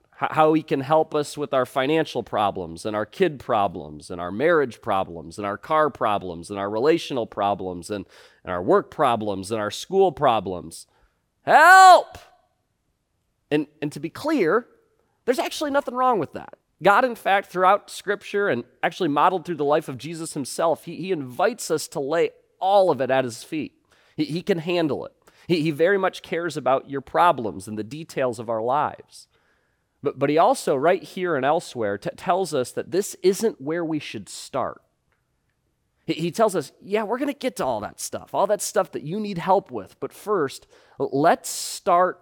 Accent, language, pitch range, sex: American, English, 125-190 Hz, male